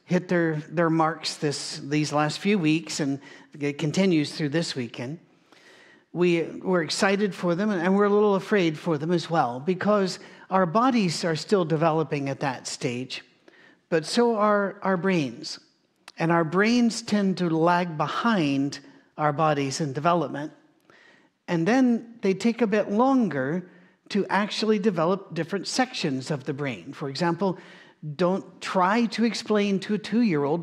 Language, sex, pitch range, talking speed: English, male, 160-205 Hz, 155 wpm